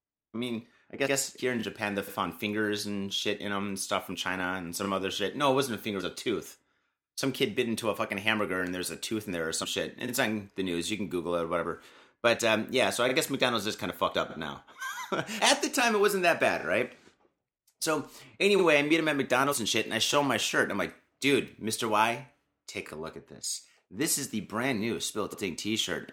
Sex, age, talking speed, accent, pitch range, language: male, 30-49, 255 wpm, American, 100-140 Hz, English